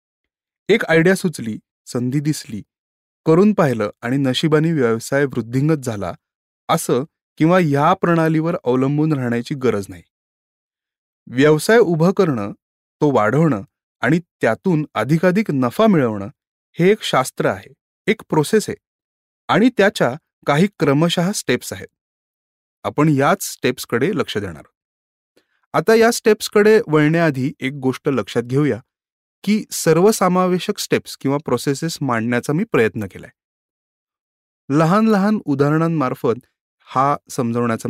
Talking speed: 110 wpm